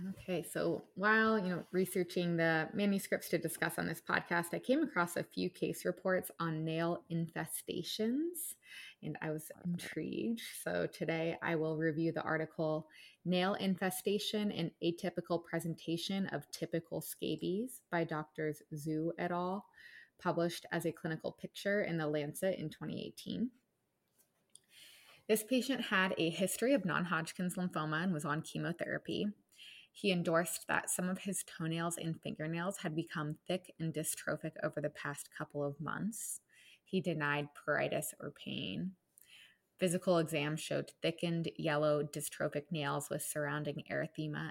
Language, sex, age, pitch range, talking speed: English, female, 20-39, 155-190 Hz, 140 wpm